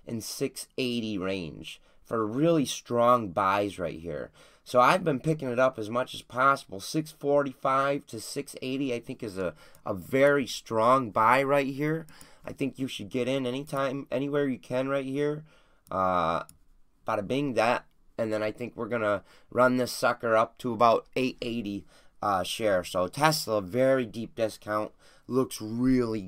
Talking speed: 160 wpm